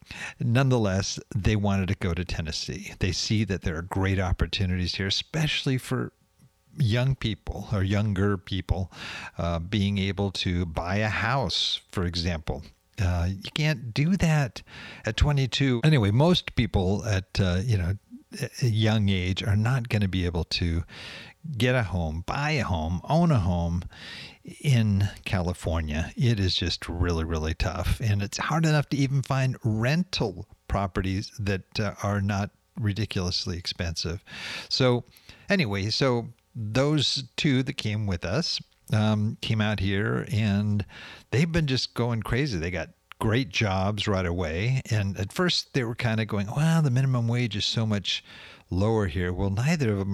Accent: American